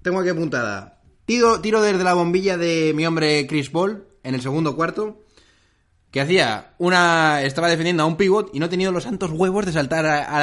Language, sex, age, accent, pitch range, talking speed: Spanish, male, 20-39, Spanish, 130-180 Hz, 200 wpm